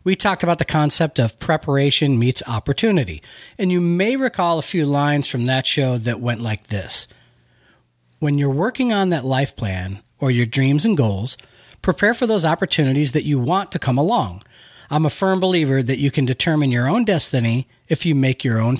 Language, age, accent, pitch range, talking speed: English, 40-59, American, 130-185 Hz, 195 wpm